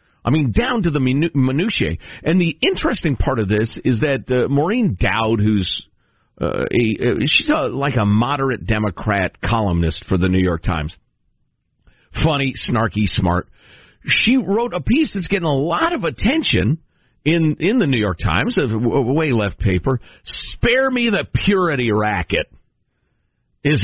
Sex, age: male, 50-69